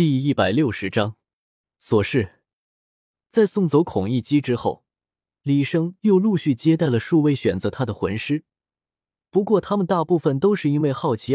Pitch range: 115-165 Hz